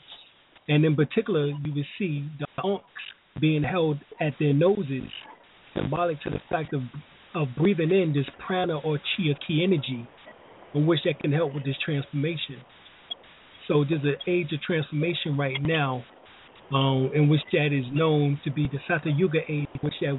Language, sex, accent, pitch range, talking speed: English, male, American, 140-155 Hz, 170 wpm